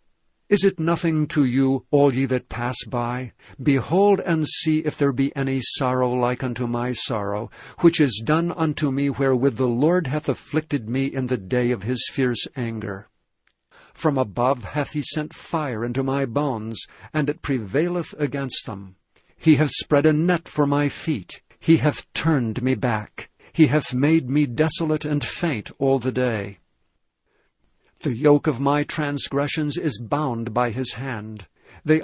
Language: English